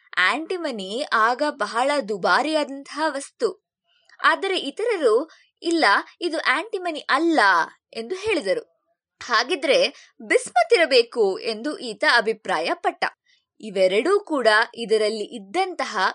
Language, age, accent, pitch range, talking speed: Kannada, 20-39, native, 230-370 Hz, 85 wpm